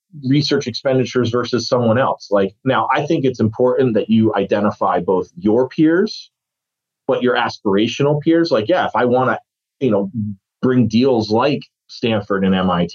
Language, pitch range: English, 100-135 Hz